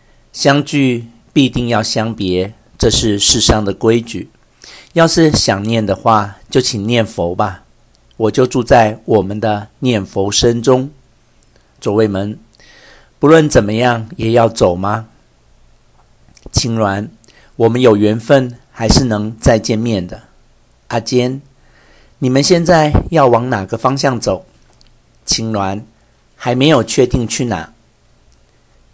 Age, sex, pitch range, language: 50-69, male, 105-125 Hz, Chinese